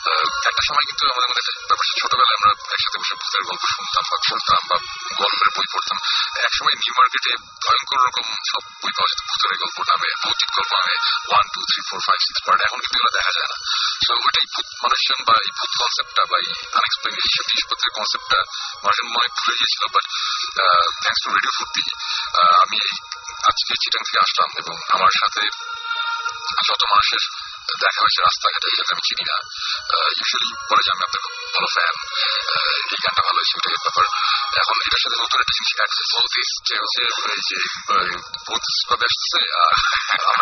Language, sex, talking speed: Bengali, male, 35 wpm